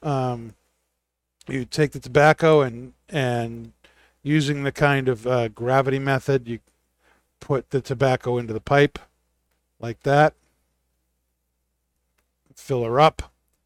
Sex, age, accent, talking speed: male, 50-69, American, 115 wpm